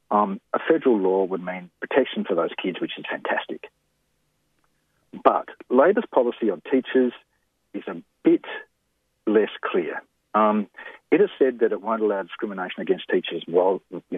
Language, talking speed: English, 150 wpm